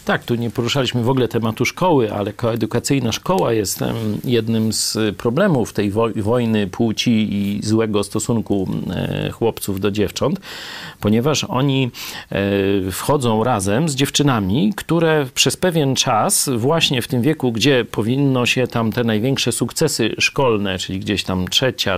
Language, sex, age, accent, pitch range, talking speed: Polish, male, 40-59, native, 115-160 Hz, 135 wpm